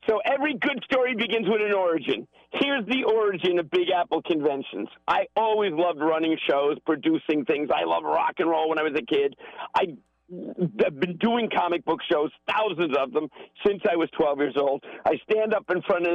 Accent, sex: American, male